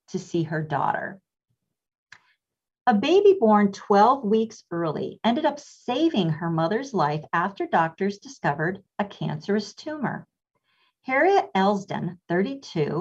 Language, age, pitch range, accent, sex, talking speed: English, 40-59, 170-235 Hz, American, female, 115 wpm